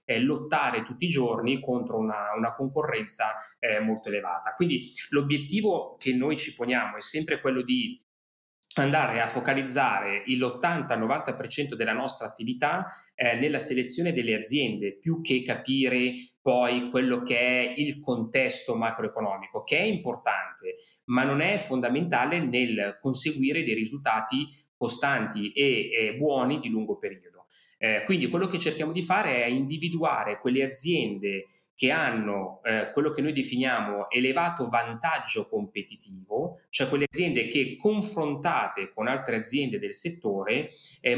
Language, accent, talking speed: Italian, native, 135 wpm